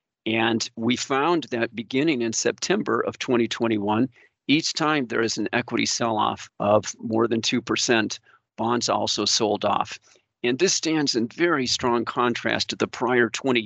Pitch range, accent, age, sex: 110-125 Hz, American, 50-69, male